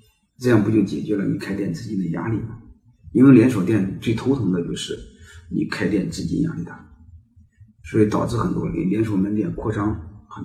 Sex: male